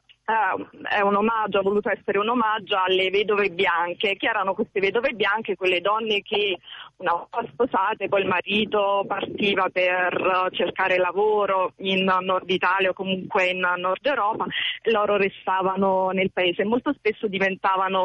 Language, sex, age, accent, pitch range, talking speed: Italian, female, 20-39, native, 185-220 Hz, 155 wpm